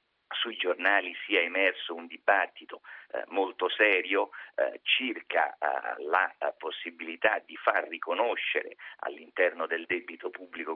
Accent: native